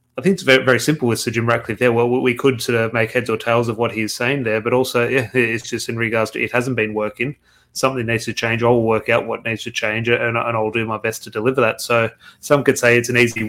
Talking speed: 285 wpm